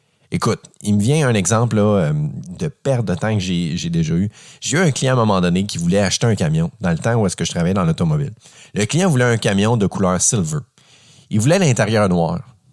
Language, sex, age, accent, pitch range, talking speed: French, male, 30-49, Canadian, 100-150 Hz, 230 wpm